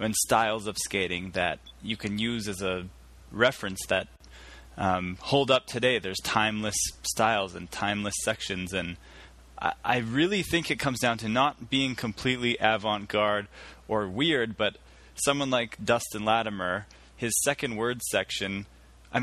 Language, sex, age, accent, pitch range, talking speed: English, male, 20-39, American, 95-130 Hz, 145 wpm